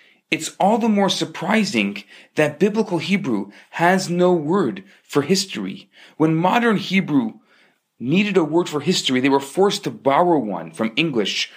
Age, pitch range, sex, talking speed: 40-59, 140-195 Hz, male, 150 wpm